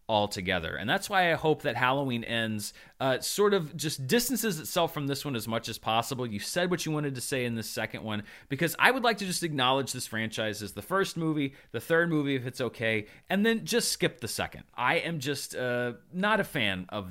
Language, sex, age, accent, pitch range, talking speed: English, male, 30-49, American, 110-165 Hz, 230 wpm